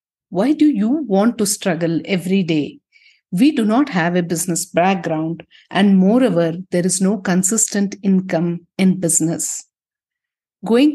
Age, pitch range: 60-79, 170-240 Hz